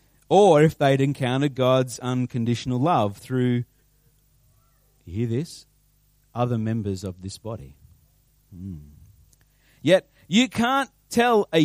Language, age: English, 40-59